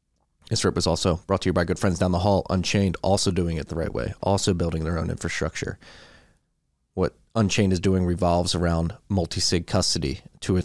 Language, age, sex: English, 30-49, male